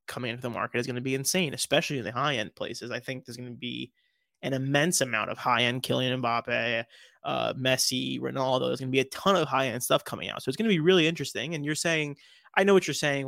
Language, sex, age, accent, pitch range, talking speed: English, male, 20-39, American, 130-155 Hz, 255 wpm